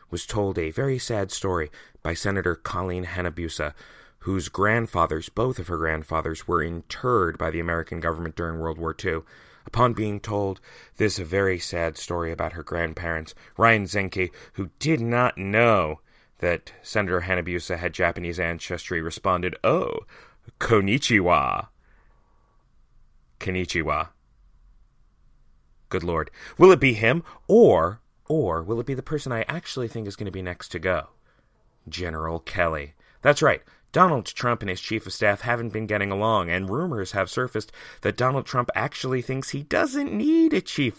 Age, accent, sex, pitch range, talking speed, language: 30-49, American, male, 85-115 Hz, 150 wpm, English